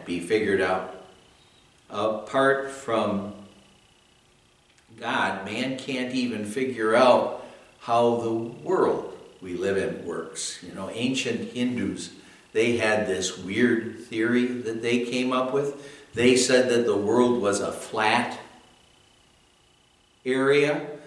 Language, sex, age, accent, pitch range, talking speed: English, male, 60-79, American, 120-155 Hz, 115 wpm